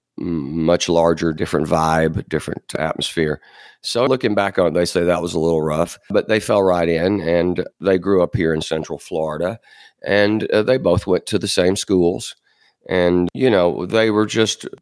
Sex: male